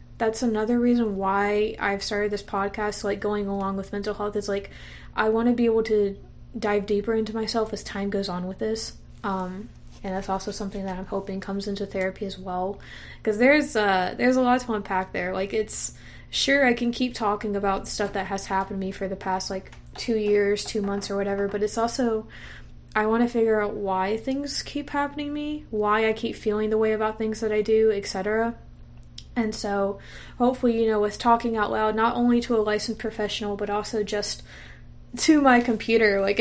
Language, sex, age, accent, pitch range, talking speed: English, female, 20-39, American, 195-225 Hz, 205 wpm